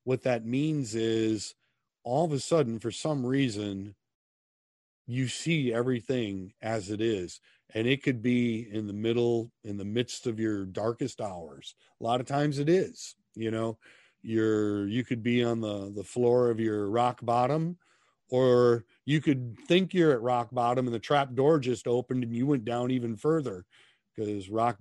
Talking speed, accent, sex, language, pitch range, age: 175 wpm, American, male, English, 115-145 Hz, 40-59